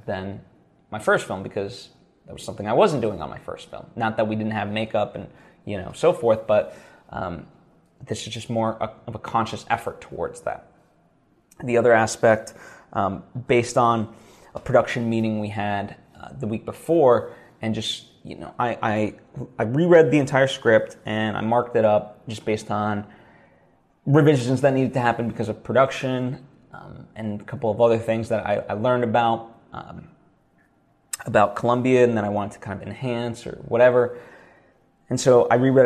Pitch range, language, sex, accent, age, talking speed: 110-125 Hz, English, male, American, 20-39, 180 wpm